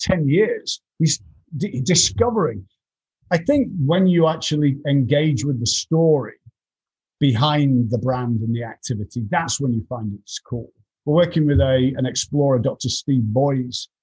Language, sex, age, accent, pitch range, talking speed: English, male, 50-69, British, 125-155 Hz, 140 wpm